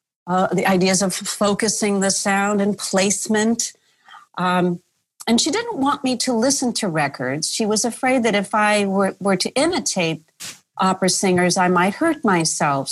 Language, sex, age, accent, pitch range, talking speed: English, female, 40-59, American, 185-240 Hz, 165 wpm